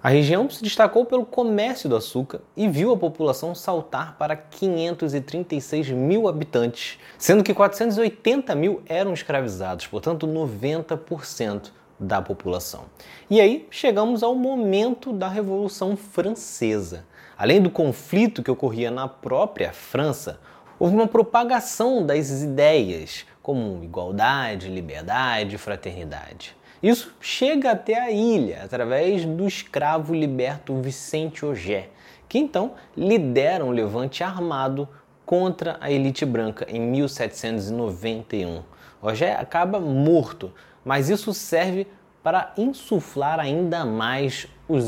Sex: male